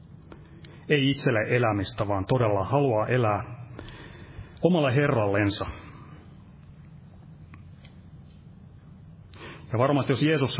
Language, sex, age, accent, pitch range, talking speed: Finnish, male, 30-49, native, 110-135 Hz, 75 wpm